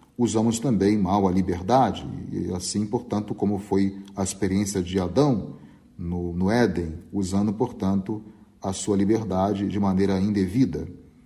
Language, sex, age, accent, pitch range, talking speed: Portuguese, male, 30-49, Brazilian, 95-120 Hz, 130 wpm